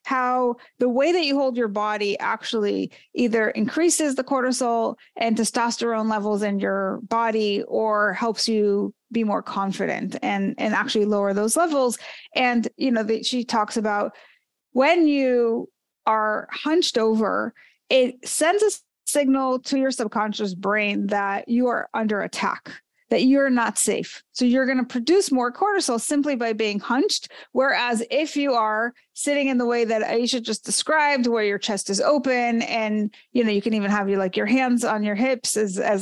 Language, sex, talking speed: English, female, 175 wpm